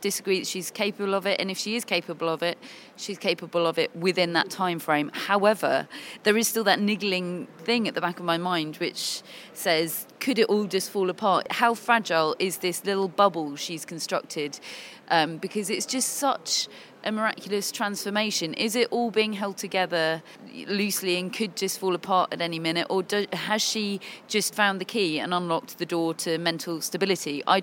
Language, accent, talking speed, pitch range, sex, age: English, British, 190 wpm, 170-205 Hz, female, 30-49